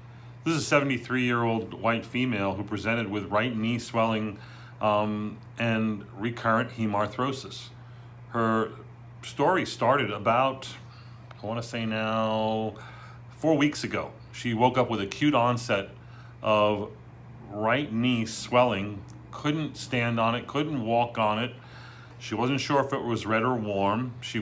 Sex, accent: male, American